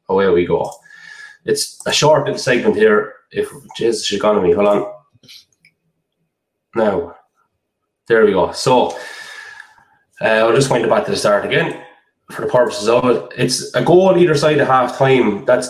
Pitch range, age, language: 125-195 Hz, 20-39, English